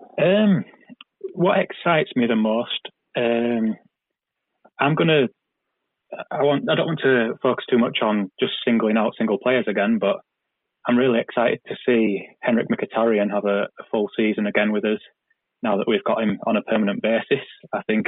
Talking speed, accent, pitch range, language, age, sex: 175 wpm, British, 110-120 Hz, English, 20-39, male